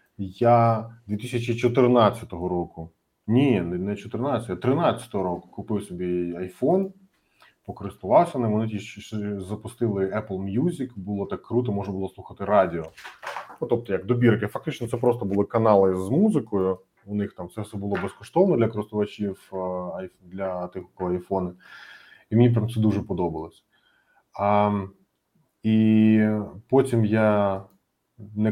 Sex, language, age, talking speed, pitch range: male, Ukrainian, 20-39, 125 wpm, 95-125 Hz